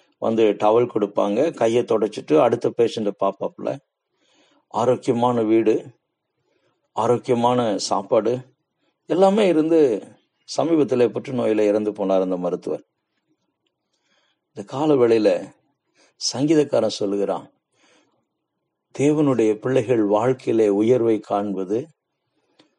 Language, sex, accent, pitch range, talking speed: Tamil, male, native, 110-140 Hz, 80 wpm